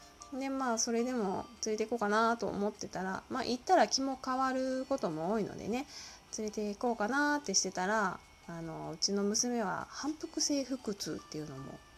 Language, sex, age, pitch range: Japanese, female, 20-39, 180-245 Hz